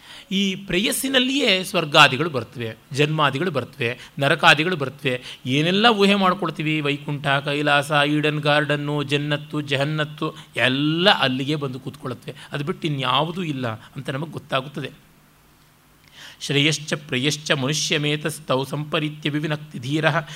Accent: native